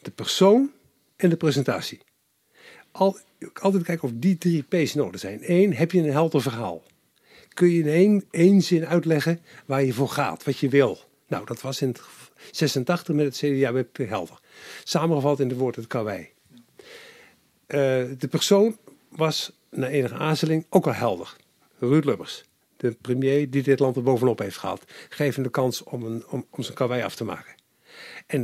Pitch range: 120-160 Hz